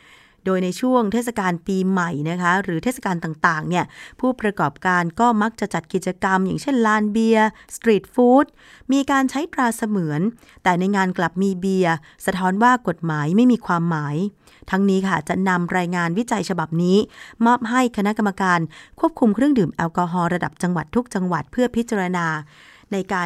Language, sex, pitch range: Thai, female, 165-215 Hz